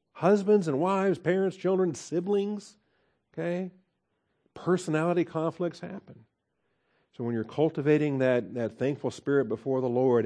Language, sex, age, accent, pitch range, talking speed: English, male, 50-69, American, 115-150 Hz, 125 wpm